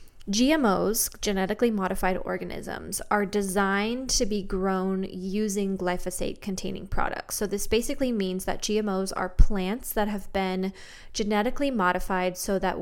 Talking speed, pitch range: 130 wpm, 185-210 Hz